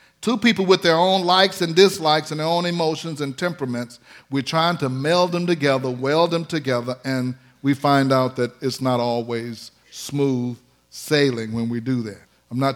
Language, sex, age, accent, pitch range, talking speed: English, male, 50-69, American, 135-190 Hz, 185 wpm